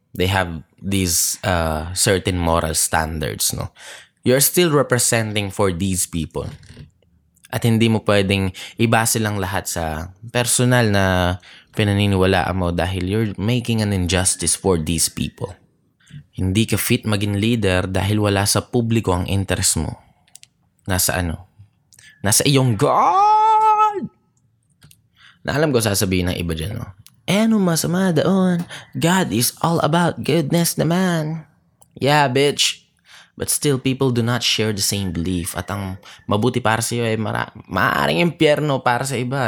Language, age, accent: Filipino, 20-39, native